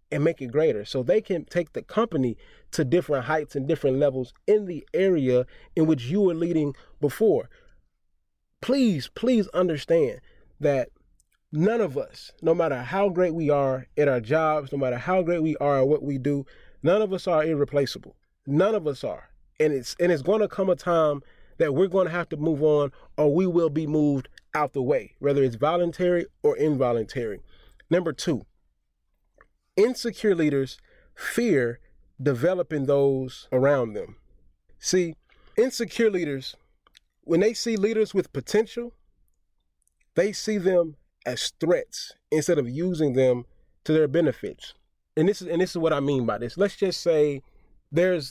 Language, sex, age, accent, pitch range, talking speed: English, male, 30-49, American, 140-185 Hz, 170 wpm